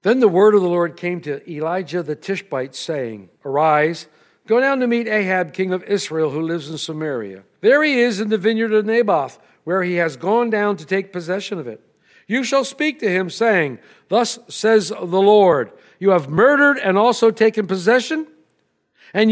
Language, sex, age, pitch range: English, male, 60-79, 190-240 Hz